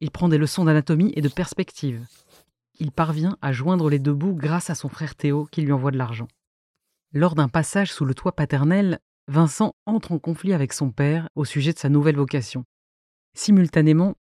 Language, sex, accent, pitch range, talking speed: French, female, French, 145-175 Hz, 190 wpm